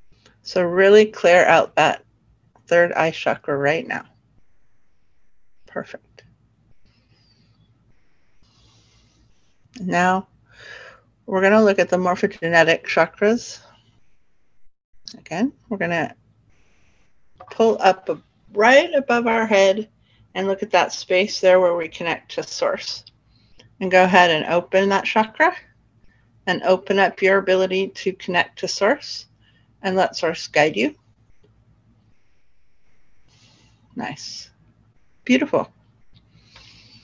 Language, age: English, 50-69